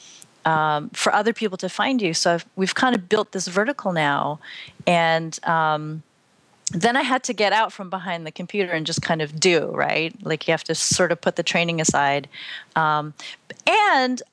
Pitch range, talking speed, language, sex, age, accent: 160-220 Hz, 190 wpm, English, female, 30-49, American